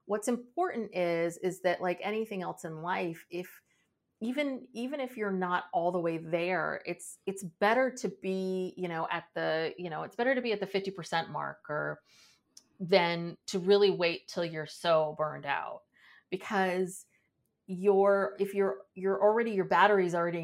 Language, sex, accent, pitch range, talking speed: English, female, American, 165-200 Hz, 165 wpm